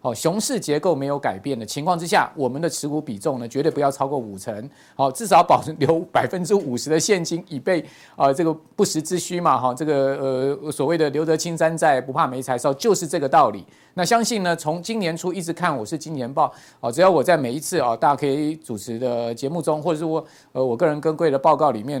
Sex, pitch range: male, 140-185 Hz